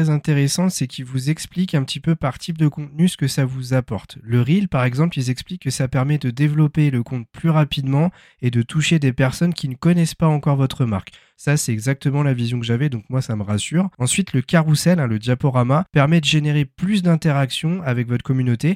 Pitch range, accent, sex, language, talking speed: 120-155 Hz, French, male, French, 225 wpm